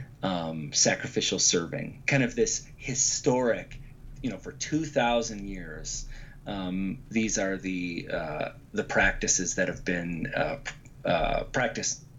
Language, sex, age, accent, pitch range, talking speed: English, male, 30-49, American, 115-140 Hz, 125 wpm